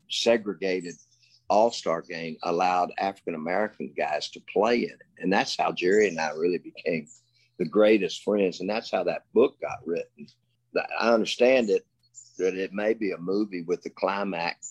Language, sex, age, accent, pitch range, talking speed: English, male, 50-69, American, 90-120 Hz, 165 wpm